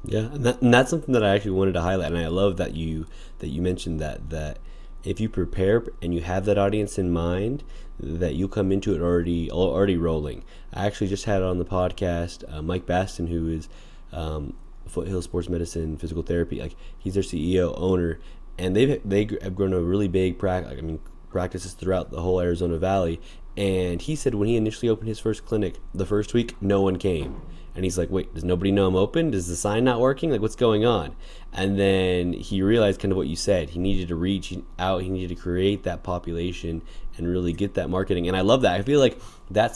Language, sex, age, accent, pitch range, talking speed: English, male, 20-39, American, 85-105 Hz, 220 wpm